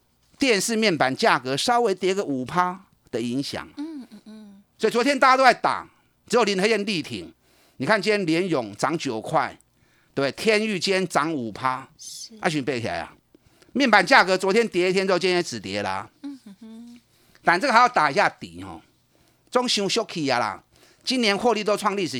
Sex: male